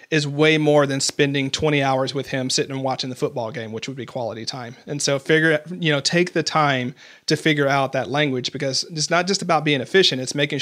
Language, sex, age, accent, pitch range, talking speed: English, male, 40-59, American, 135-155 Hz, 235 wpm